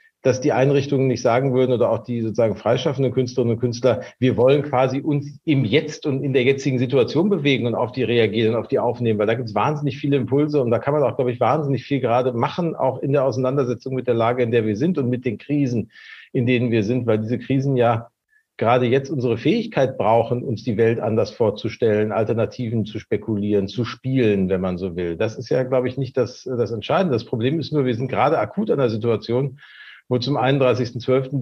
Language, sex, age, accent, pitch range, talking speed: German, male, 40-59, German, 115-135 Hz, 220 wpm